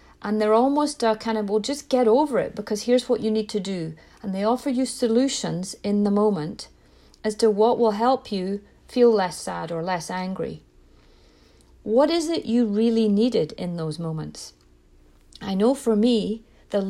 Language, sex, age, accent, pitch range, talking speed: English, female, 40-59, British, 180-235 Hz, 185 wpm